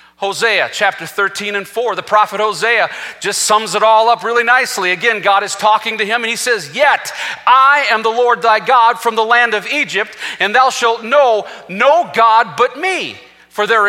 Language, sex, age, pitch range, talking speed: English, male, 40-59, 140-220 Hz, 200 wpm